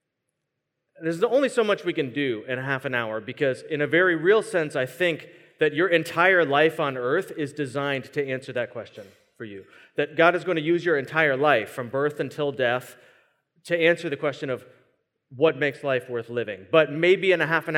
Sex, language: male, English